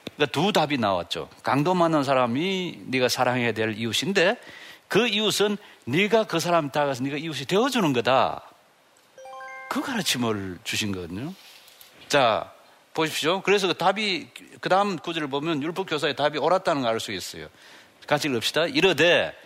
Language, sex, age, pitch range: Korean, male, 40-59, 125-180 Hz